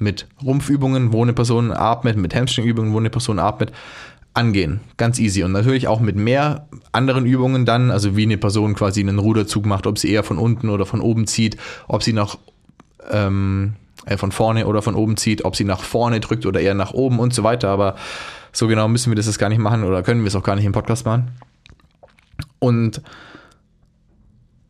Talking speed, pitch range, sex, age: 200 wpm, 105-120 Hz, male, 20-39